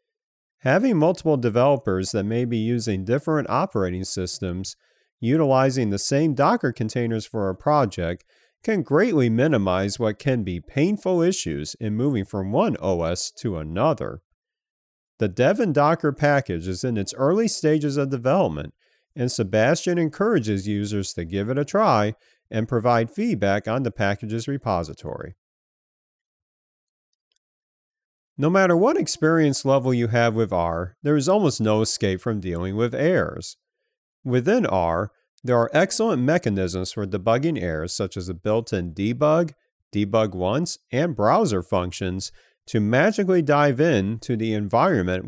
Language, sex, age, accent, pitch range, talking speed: English, male, 40-59, American, 95-150 Hz, 140 wpm